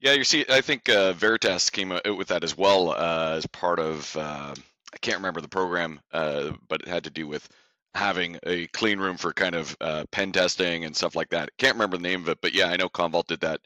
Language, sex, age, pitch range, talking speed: English, male, 30-49, 85-100 Hz, 250 wpm